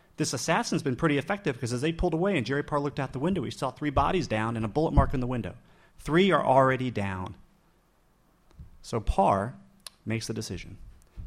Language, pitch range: English, 100-135 Hz